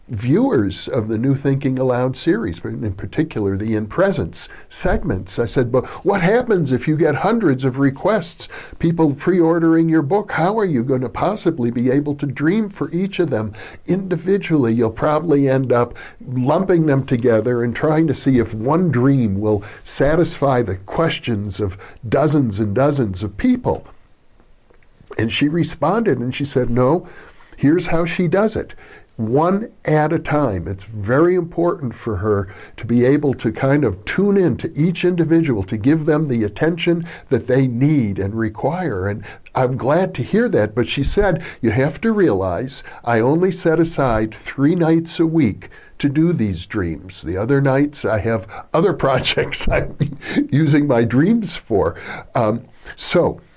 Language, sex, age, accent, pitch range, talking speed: English, male, 60-79, American, 115-165 Hz, 165 wpm